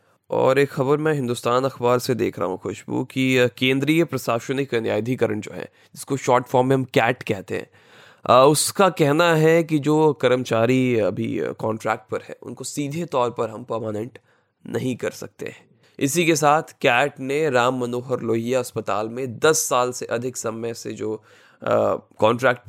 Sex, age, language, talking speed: male, 20-39, Hindi, 165 wpm